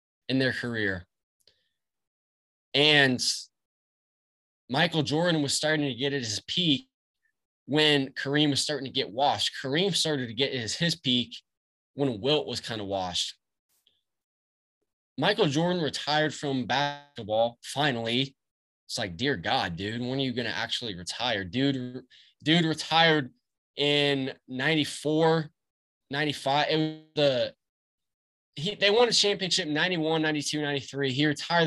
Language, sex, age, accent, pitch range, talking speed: English, male, 20-39, American, 110-155 Hz, 135 wpm